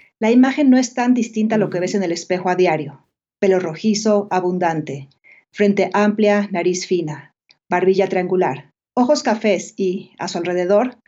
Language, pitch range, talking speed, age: Spanish, 180-215 Hz, 160 wpm, 40-59